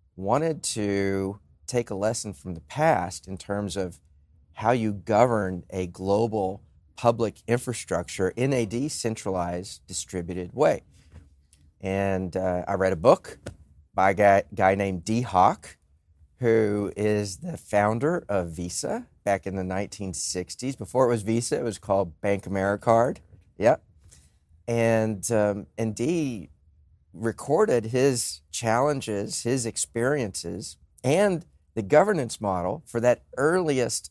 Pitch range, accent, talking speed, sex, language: 90-115 Hz, American, 125 wpm, male, English